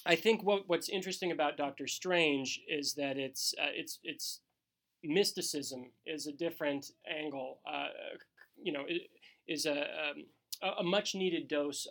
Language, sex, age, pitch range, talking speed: English, male, 30-49, 140-180 Hz, 125 wpm